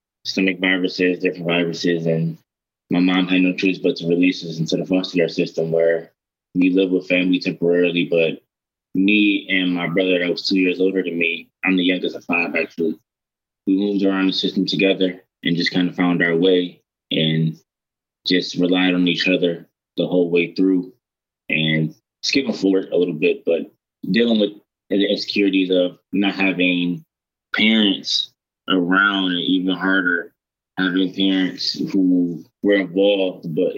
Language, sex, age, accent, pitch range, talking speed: English, male, 20-39, American, 85-95 Hz, 160 wpm